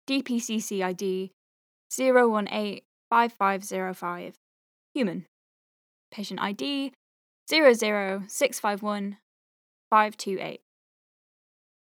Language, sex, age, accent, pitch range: English, female, 10-29, British, 195-265 Hz